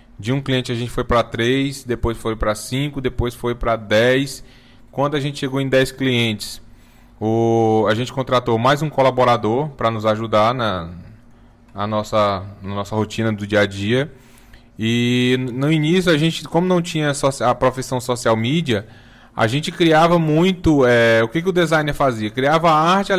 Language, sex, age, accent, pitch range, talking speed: Portuguese, male, 20-39, Brazilian, 115-150 Hz, 180 wpm